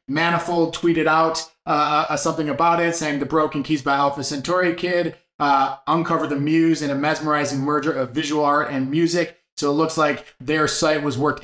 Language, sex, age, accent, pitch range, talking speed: English, male, 20-39, American, 145-170 Hz, 195 wpm